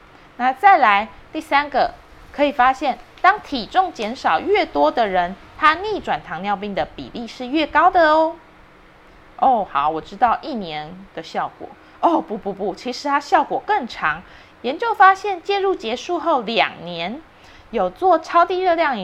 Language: English